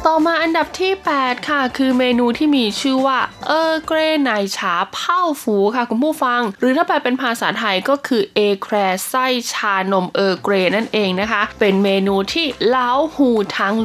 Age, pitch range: 20-39, 195-255 Hz